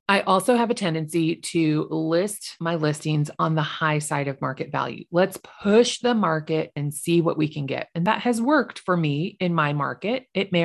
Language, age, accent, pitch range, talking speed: English, 30-49, American, 155-195 Hz, 210 wpm